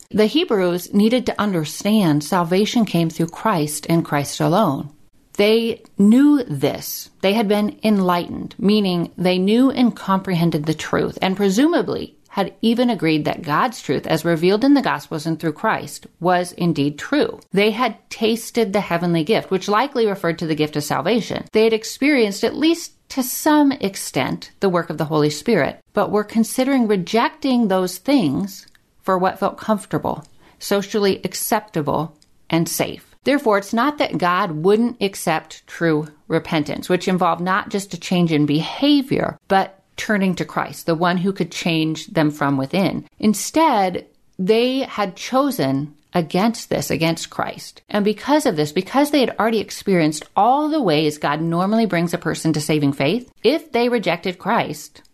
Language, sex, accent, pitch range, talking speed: English, female, American, 165-225 Hz, 160 wpm